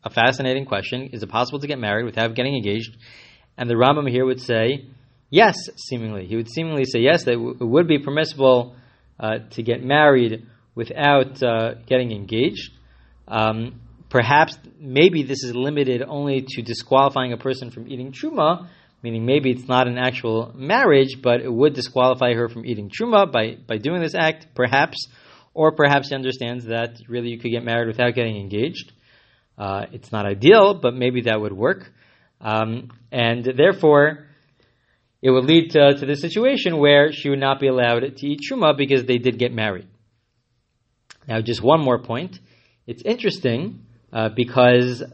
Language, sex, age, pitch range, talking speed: English, male, 30-49, 115-140 Hz, 170 wpm